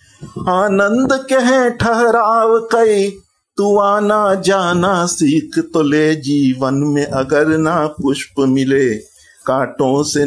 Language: Hindi